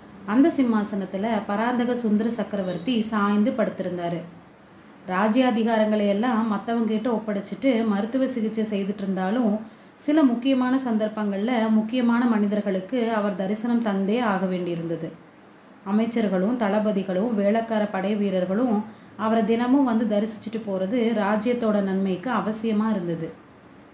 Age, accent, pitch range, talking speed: 30-49, native, 200-235 Hz, 95 wpm